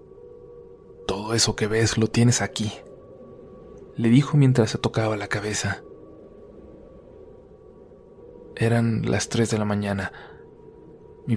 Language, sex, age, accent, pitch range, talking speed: Spanish, male, 20-39, Mexican, 110-140 Hz, 110 wpm